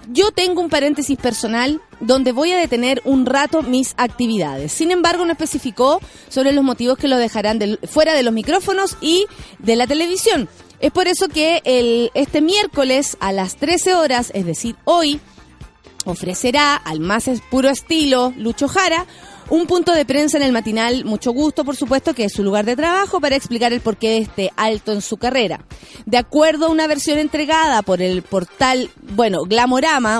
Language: Spanish